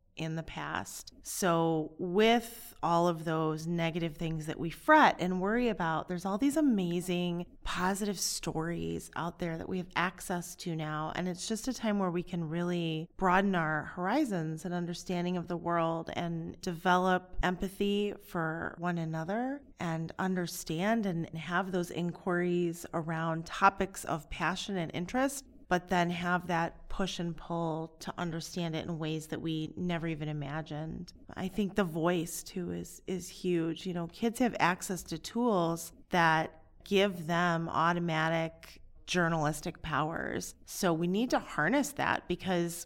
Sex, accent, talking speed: female, American, 155 wpm